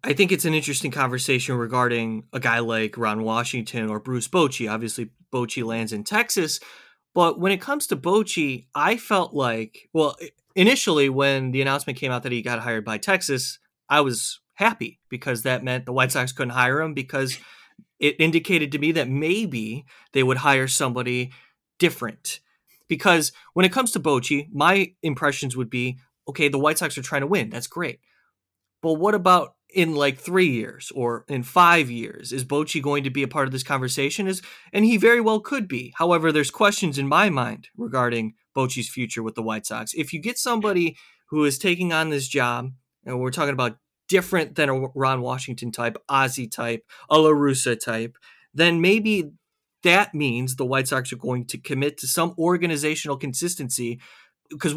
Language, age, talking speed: English, 30-49, 185 wpm